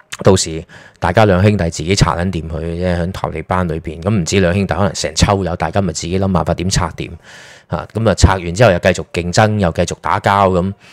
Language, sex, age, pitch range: Chinese, male, 20-39, 85-110 Hz